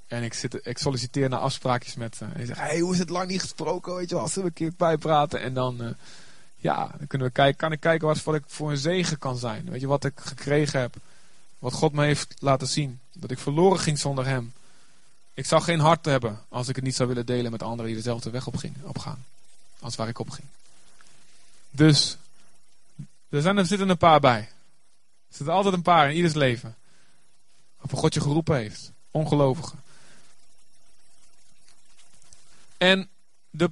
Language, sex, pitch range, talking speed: Dutch, male, 130-170 Hz, 190 wpm